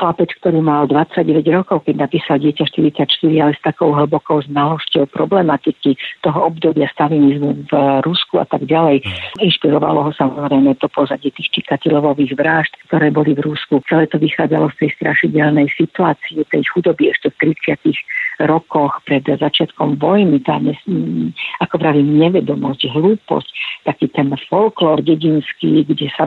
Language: Slovak